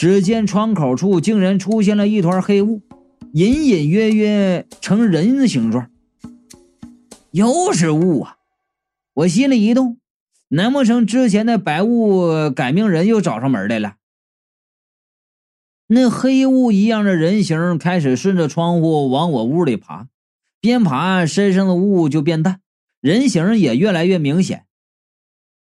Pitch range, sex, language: 180-245 Hz, male, Chinese